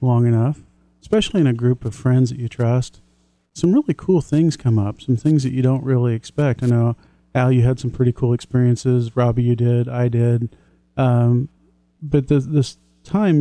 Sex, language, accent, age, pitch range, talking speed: male, English, American, 40-59, 120-135 Hz, 190 wpm